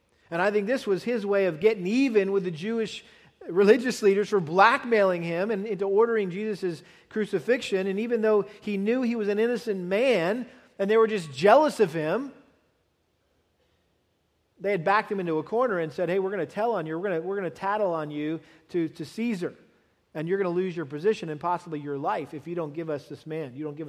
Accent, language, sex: American, English, male